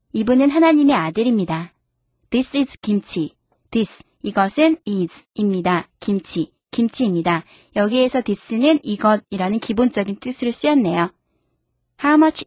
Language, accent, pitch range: Korean, native, 200-280 Hz